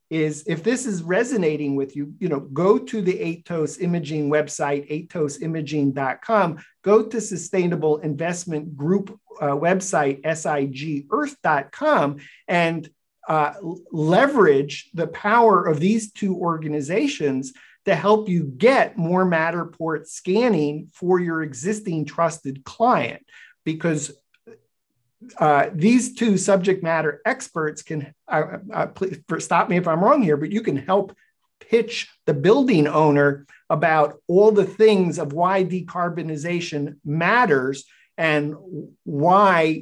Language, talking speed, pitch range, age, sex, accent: English, 120 wpm, 150-190 Hz, 50-69, male, American